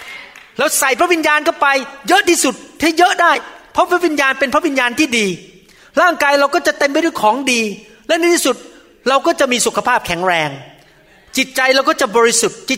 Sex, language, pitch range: male, Thai, 195-280 Hz